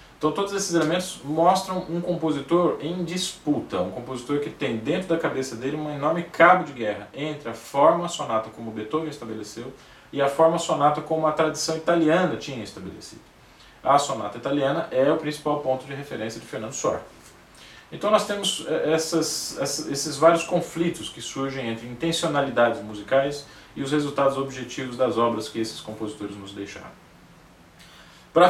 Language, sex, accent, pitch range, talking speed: Portuguese, male, Brazilian, 120-160 Hz, 160 wpm